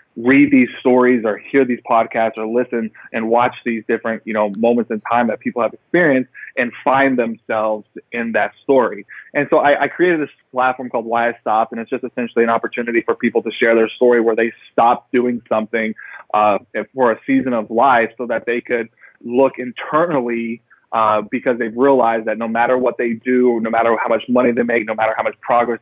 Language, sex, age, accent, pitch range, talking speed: English, male, 30-49, American, 115-125 Hz, 210 wpm